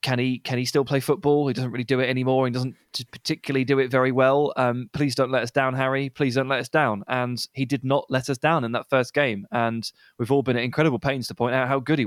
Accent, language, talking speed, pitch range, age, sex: British, English, 280 wpm, 115-140 Hz, 20-39, male